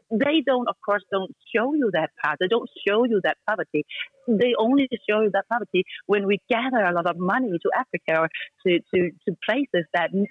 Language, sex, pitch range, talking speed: Swedish, female, 190-250 Hz, 210 wpm